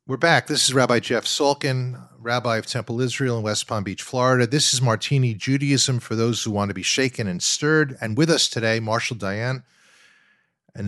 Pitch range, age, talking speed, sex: 105-140 Hz, 50-69, 200 wpm, male